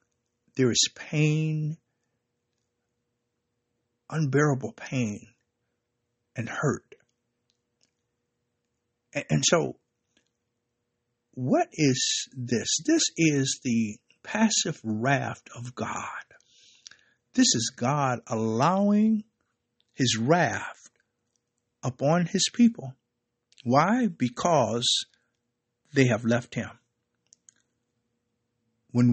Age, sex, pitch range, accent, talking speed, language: 60-79, male, 120-140 Hz, American, 75 wpm, English